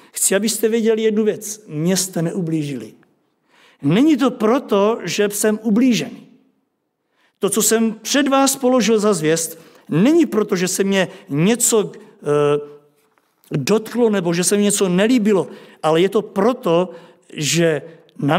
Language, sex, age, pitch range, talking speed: Czech, male, 50-69, 185-235 Hz, 135 wpm